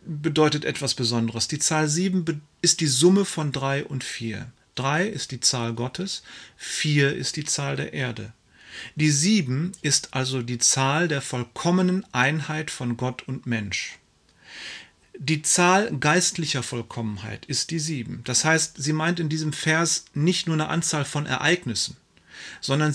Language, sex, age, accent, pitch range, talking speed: German, male, 40-59, German, 125-165 Hz, 150 wpm